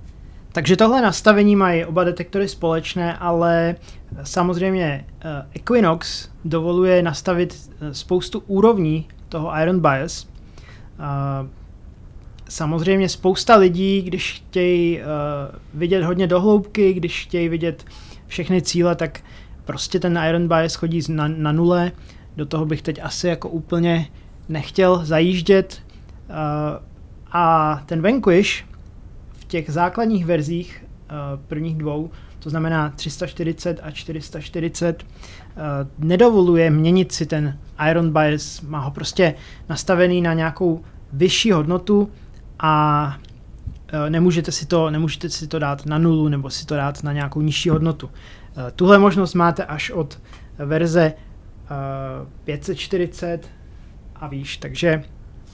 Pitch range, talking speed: 150-180 Hz, 105 wpm